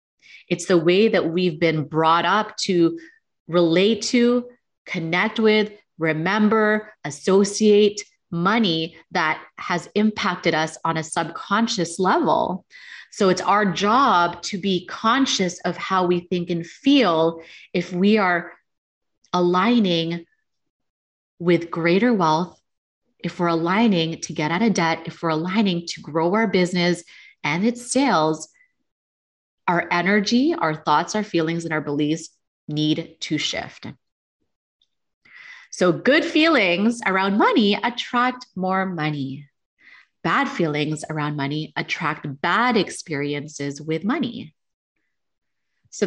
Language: English